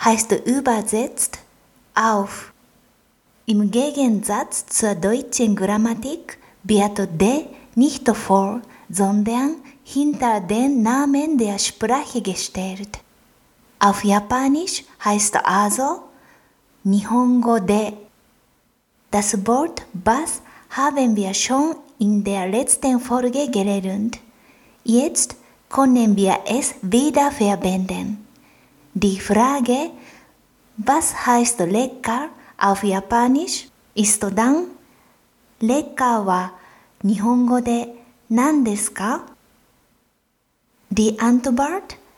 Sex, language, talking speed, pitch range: female, German, 75 wpm, 205-265 Hz